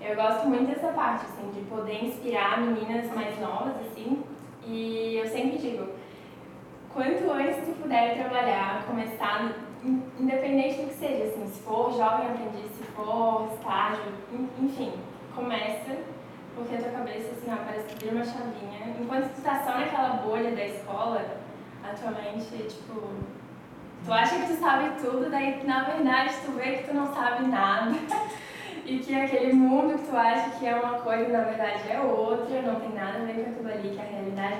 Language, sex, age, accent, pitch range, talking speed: Portuguese, female, 10-29, Brazilian, 220-255 Hz, 175 wpm